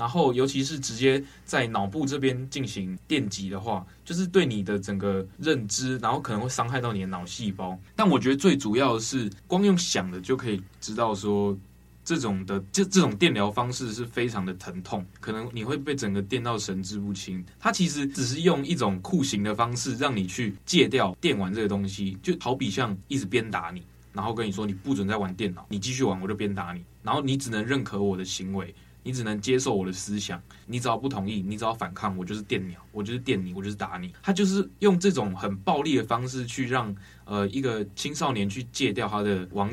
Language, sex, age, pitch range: Chinese, male, 20-39, 100-130 Hz